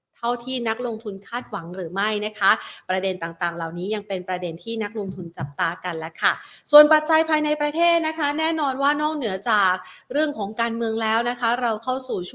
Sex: female